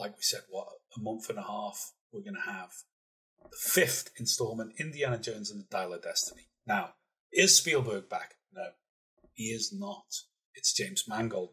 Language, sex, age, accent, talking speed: English, male, 30-49, British, 175 wpm